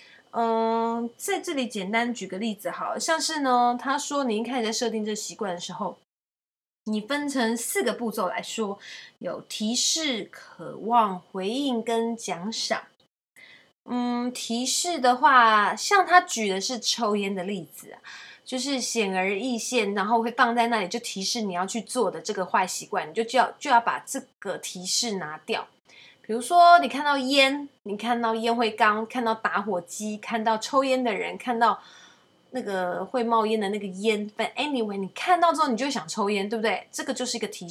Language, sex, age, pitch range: Chinese, female, 20-39, 205-250 Hz